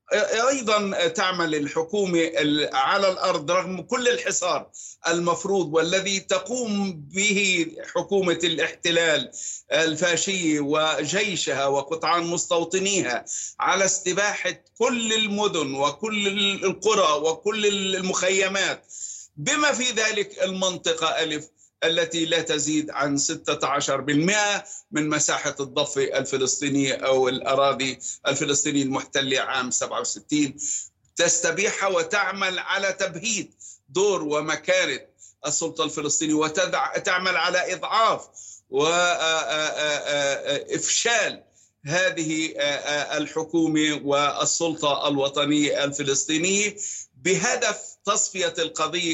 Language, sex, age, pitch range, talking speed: Arabic, male, 50-69, 145-195 Hz, 80 wpm